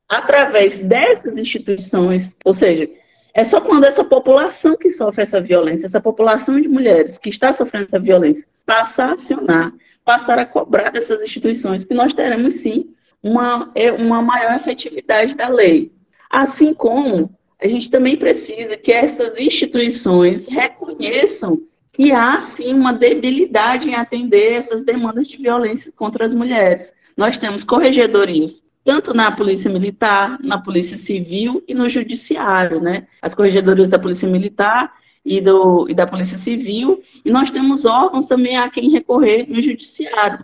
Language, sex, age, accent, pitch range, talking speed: Portuguese, female, 20-39, Brazilian, 205-275 Hz, 145 wpm